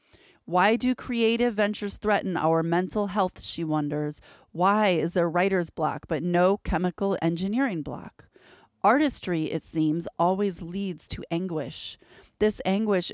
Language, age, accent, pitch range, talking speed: English, 30-49, American, 170-210 Hz, 135 wpm